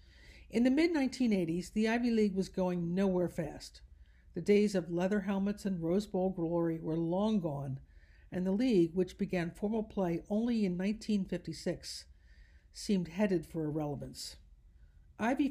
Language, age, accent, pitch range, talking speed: English, 60-79, American, 150-205 Hz, 145 wpm